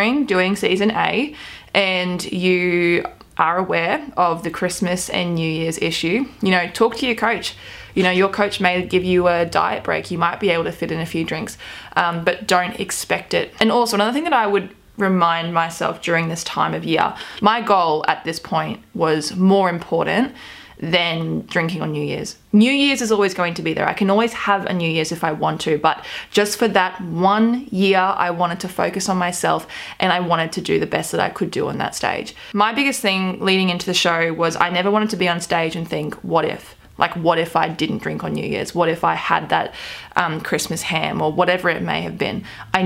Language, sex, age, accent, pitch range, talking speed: English, female, 20-39, Australian, 170-200 Hz, 225 wpm